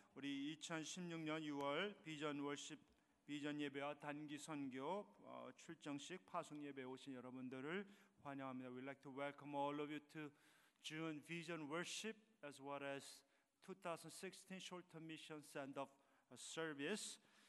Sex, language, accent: male, Korean, native